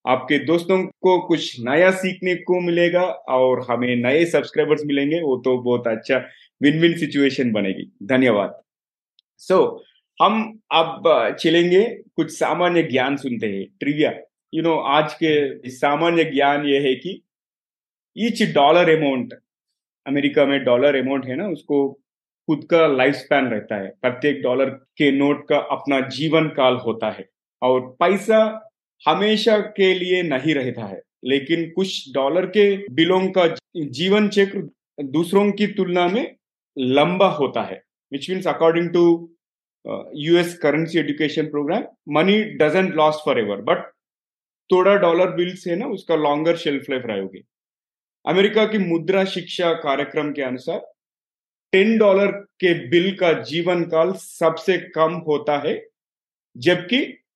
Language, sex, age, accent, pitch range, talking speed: Hindi, male, 30-49, native, 140-185 Hz, 130 wpm